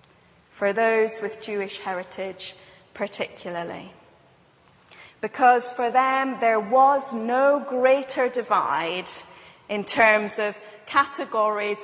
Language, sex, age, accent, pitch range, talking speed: English, female, 30-49, British, 195-245 Hz, 90 wpm